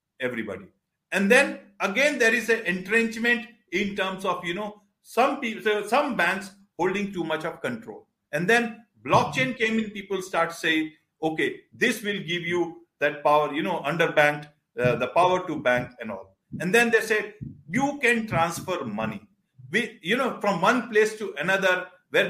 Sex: male